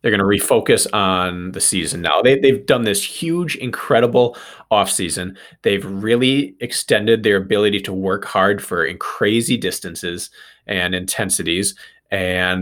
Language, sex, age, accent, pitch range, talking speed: English, male, 20-39, American, 90-110 Hz, 145 wpm